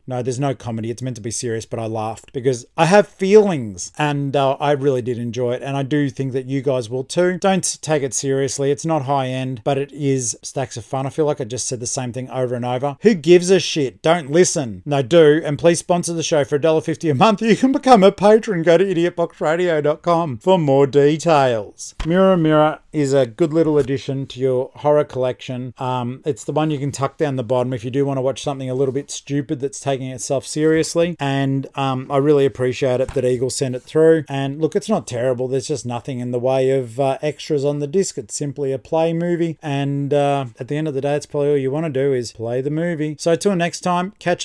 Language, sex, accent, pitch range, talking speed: English, male, Australian, 130-155 Hz, 240 wpm